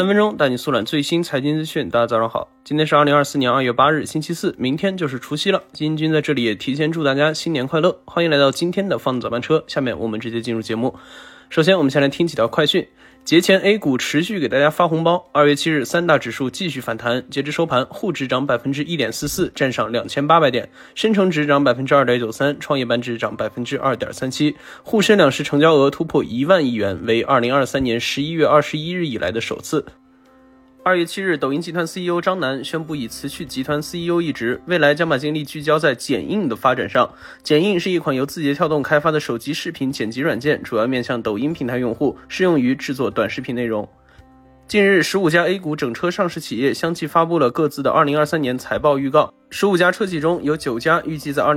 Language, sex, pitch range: Chinese, male, 135-170 Hz